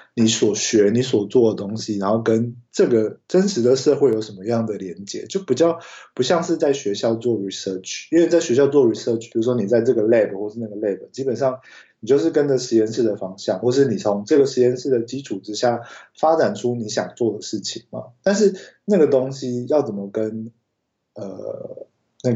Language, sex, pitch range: Chinese, male, 110-155 Hz